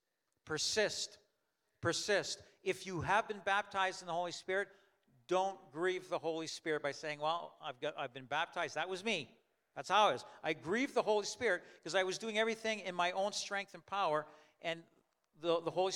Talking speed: 190 wpm